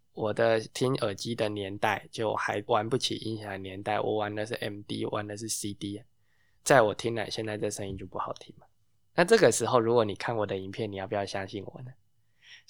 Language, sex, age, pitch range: Chinese, male, 20-39, 105-130 Hz